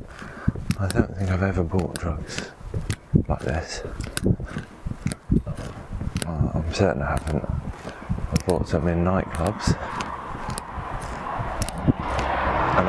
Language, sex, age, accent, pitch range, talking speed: English, male, 20-39, British, 80-90 Hz, 95 wpm